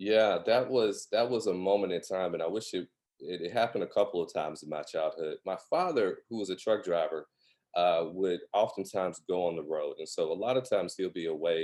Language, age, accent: English, 30-49, American